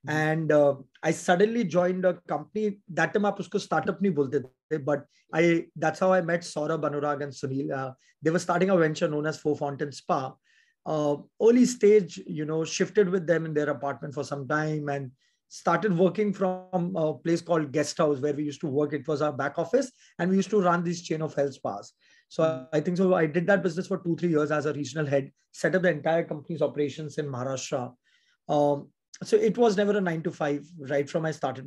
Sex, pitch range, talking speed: male, 150-180 Hz, 210 wpm